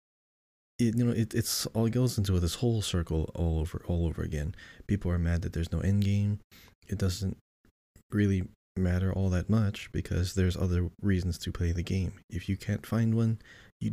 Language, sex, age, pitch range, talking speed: English, male, 20-39, 80-100 Hz, 185 wpm